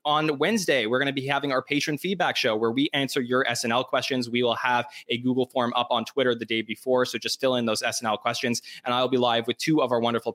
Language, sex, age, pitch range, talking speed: English, male, 20-39, 120-145 Hz, 260 wpm